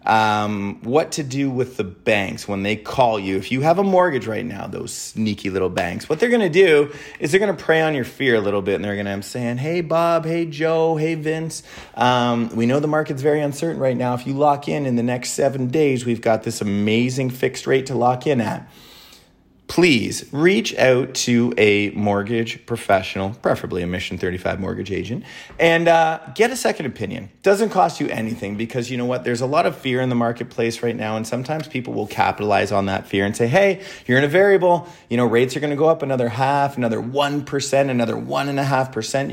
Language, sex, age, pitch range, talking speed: English, male, 30-49, 110-155 Hz, 220 wpm